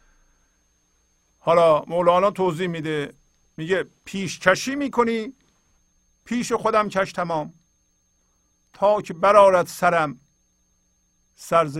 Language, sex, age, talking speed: Persian, male, 50-69, 80 wpm